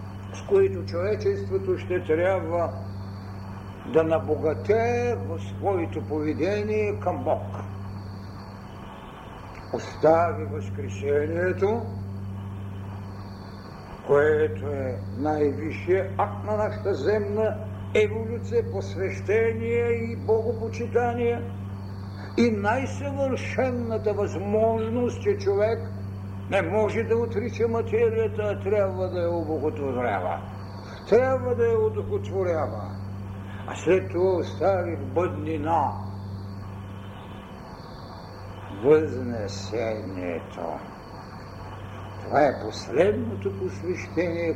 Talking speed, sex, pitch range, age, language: 75 wpm, male, 95-110 Hz, 60-79, Bulgarian